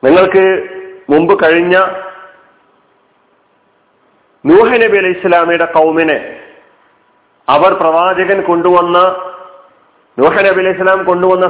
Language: Malayalam